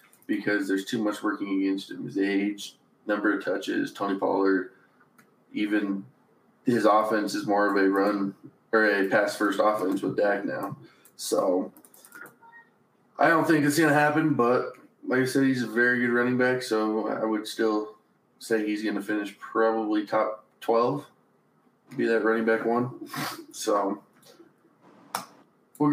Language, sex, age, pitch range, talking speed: English, male, 20-39, 110-175 Hz, 155 wpm